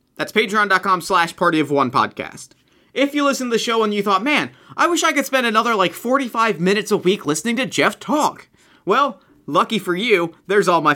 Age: 30-49